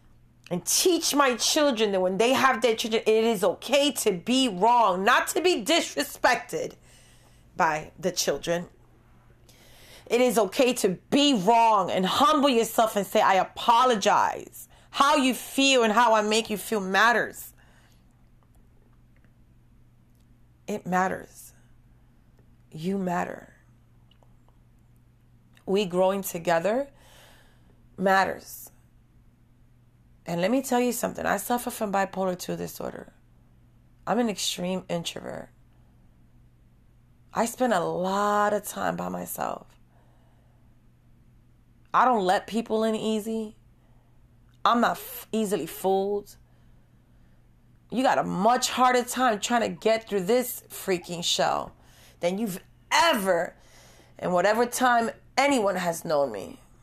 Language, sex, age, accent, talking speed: English, female, 30-49, American, 120 wpm